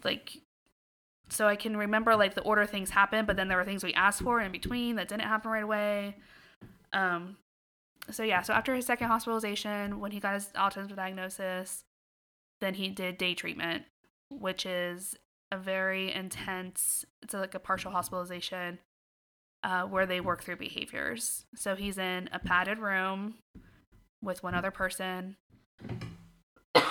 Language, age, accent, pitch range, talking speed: English, 20-39, American, 180-200 Hz, 155 wpm